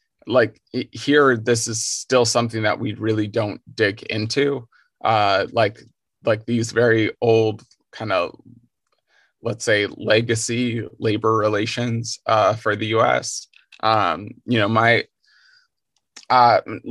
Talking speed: 125 wpm